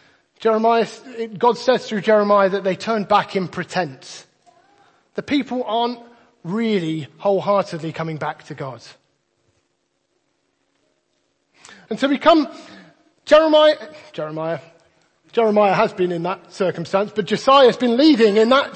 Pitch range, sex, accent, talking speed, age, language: 180-240 Hz, male, British, 120 wpm, 30-49, English